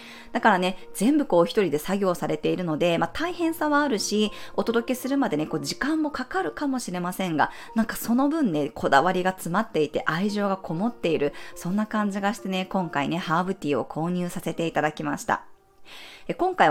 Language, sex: Japanese, female